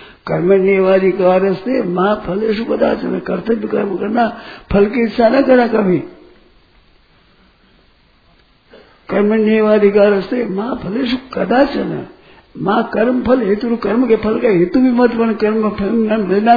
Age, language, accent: 60-79, Hindi, native